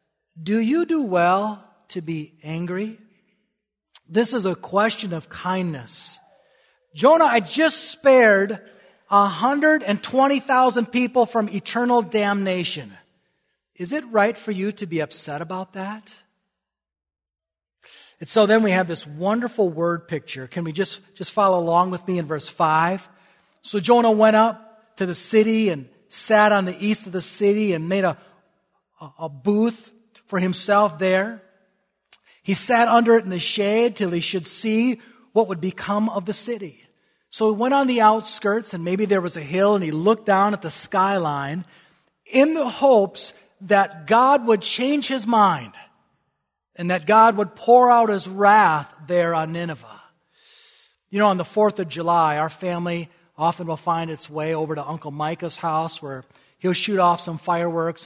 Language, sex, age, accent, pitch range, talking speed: English, male, 40-59, American, 170-220 Hz, 160 wpm